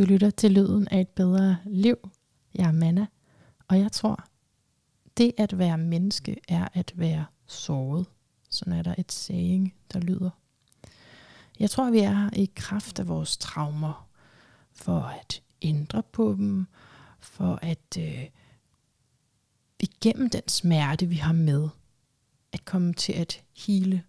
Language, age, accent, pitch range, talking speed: Danish, 30-49, native, 155-200 Hz, 140 wpm